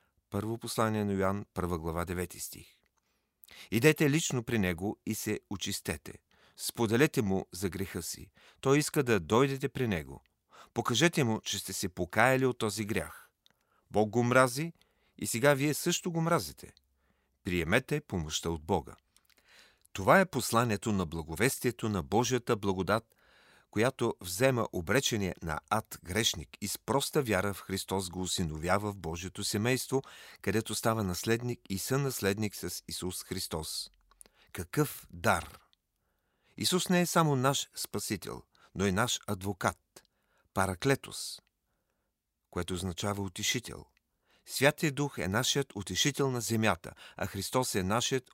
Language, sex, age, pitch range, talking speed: Bulgarian, male, 40-59, 95-130 Hz, 135 wpm